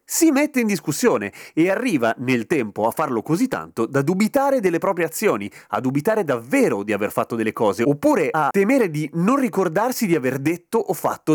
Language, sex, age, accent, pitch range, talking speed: Italian, male, 30-49, native, 115-160 Hz, 190 wpm